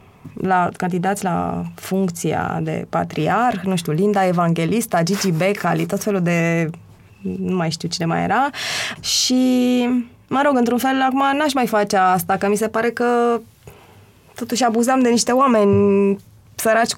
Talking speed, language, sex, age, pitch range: 150 wpm, Romanian, female, 20-39, 185-240 Hz